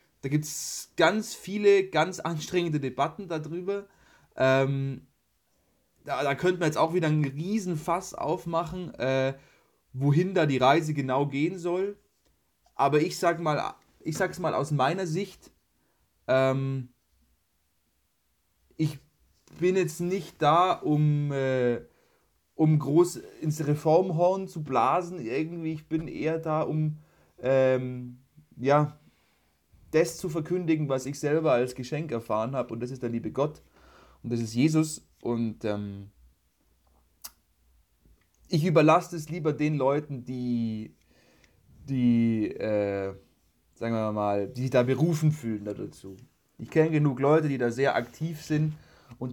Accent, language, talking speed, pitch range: German, German, 135 wpm, 120-160 Hz